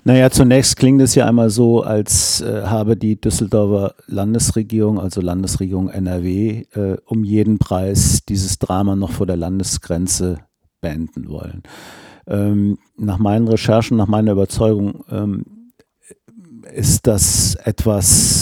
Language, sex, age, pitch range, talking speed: German, male, 50-69, 95-115 Hz, 125 wpm